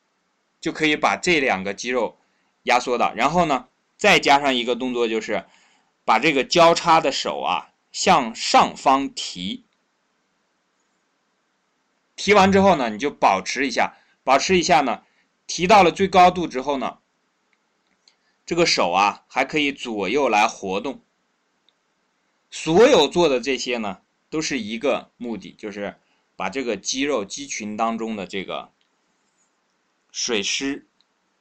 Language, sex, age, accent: Chinese, male, 20-39, native